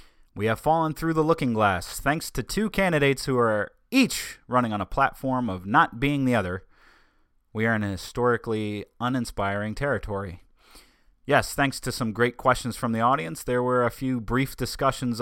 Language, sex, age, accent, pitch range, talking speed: English, male, 30-49, American, 105-130 Hz, 180 wpm